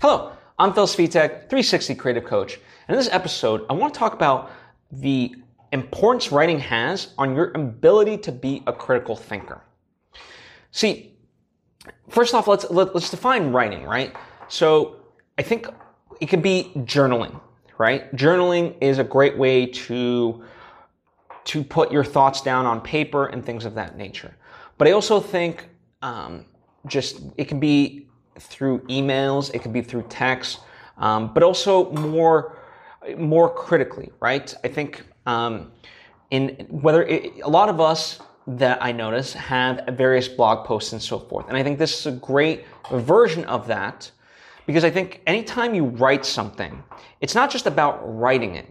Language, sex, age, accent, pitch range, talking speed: English, male, 20-39, American, 125-170 Hz, 155 wpm